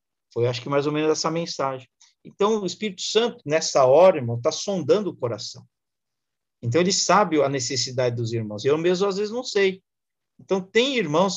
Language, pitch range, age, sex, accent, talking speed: Portuguese, 140-210 Hz, 50-69, male, Brazilian, 185 wpm